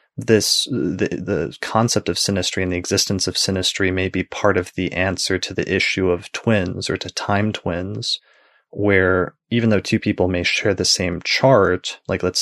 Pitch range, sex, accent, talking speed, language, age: 90-105 Hz, male, American, 185 wpm, English, 20-39